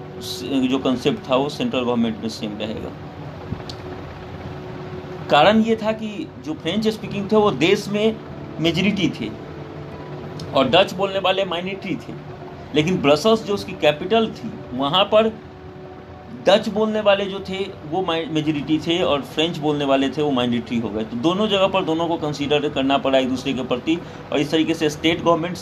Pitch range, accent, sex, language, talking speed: 130-185 Hz, native, male, Hindi, 105 wpm